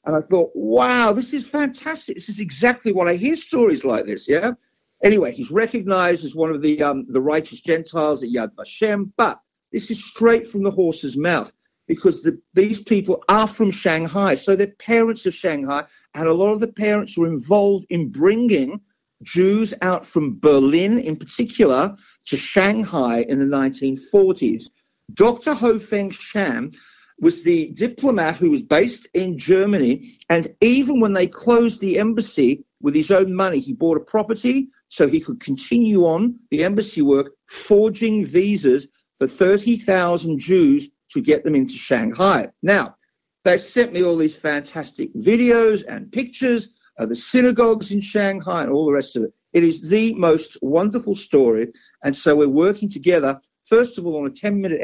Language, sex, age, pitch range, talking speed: Hebrew, male, 50-69, 160-230 Hz, 170 wpm